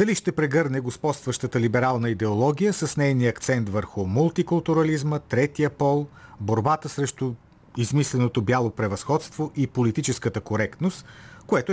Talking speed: 115 wpm